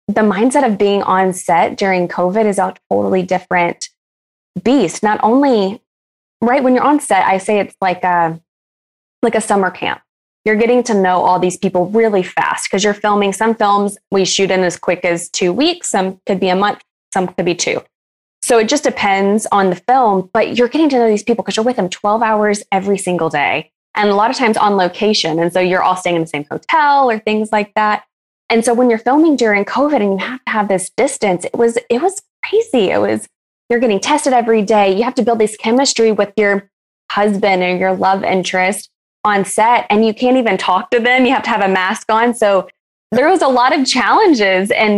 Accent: American